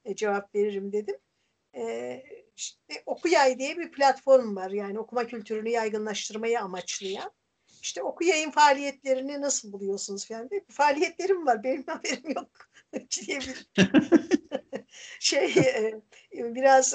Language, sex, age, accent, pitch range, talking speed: Turkish, female, 60-79, native, 190-260 Hz, 105 wpm